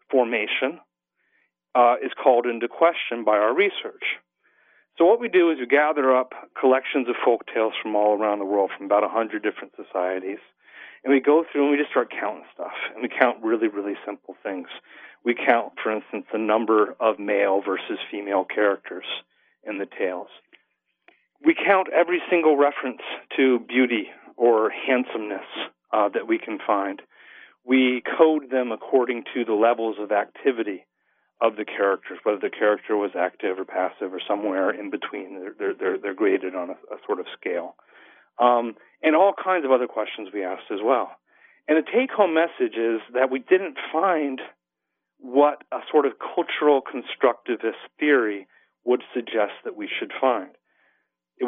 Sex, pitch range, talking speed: male, 110-160 Hz, 165 wpm